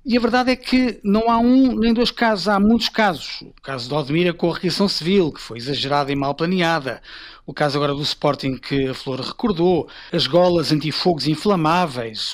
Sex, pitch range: male, 160-225 Hz